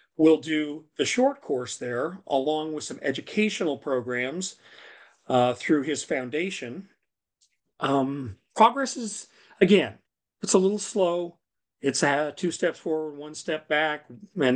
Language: English